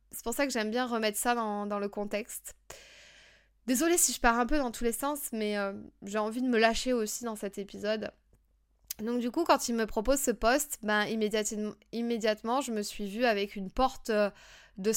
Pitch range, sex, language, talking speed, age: 205-255 Hz, female, French, 215 wpm, 20-39